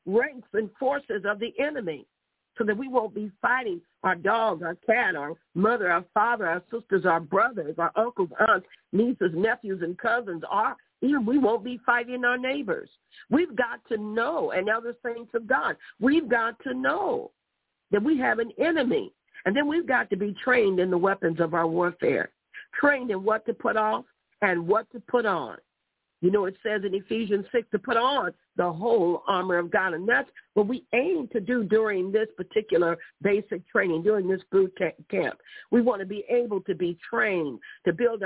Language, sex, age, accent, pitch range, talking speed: English, female, 50-69, American, 185-245 Hz, 195 wpm